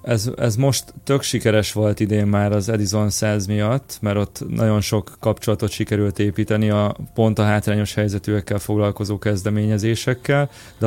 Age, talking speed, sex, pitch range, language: 30-49, 150 wpm, male, 105-115 Hz, Hungarian